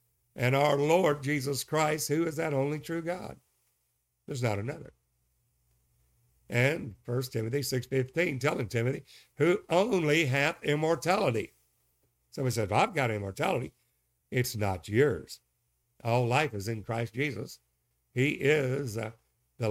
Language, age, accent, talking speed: English, 60-79, American, 135 wpm